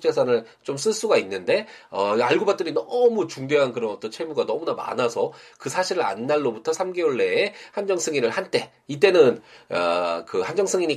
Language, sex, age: Korean, male, 20-39